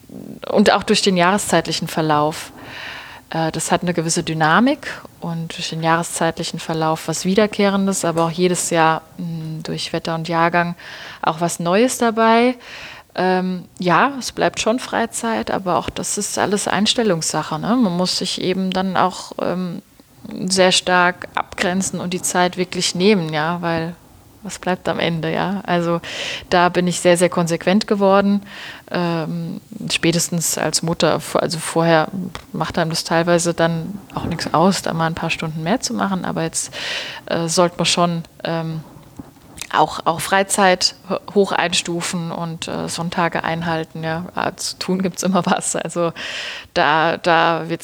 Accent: German